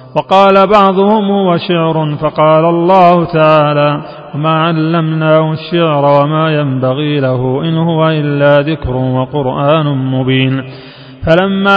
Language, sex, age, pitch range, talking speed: Arabic, male, 30-49, 145-170 Hz, 95 wpm